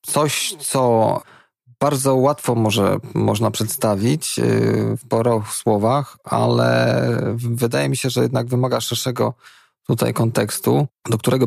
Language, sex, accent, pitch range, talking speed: Polish, male, native, 110-125 Hz, 115 wpm